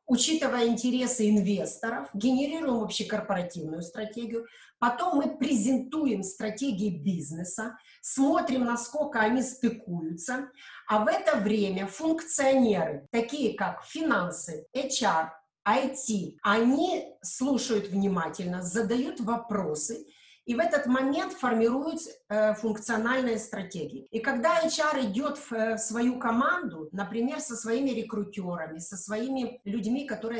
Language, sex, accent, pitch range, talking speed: Russian, female, native, 195-250 Hz, 105 wpm